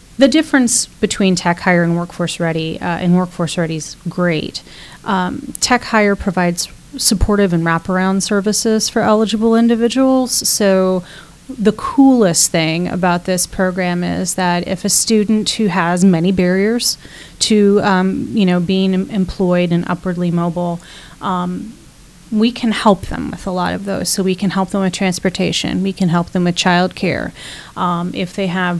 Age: 30-49